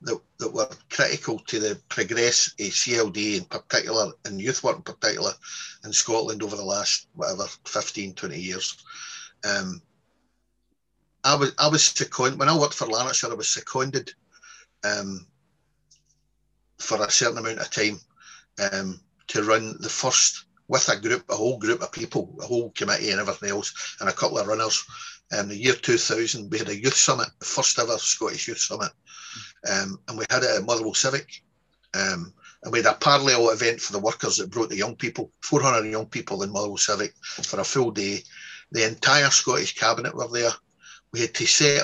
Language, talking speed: English, 185 wpm